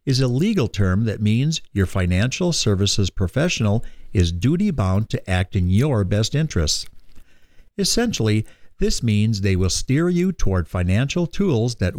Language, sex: English, male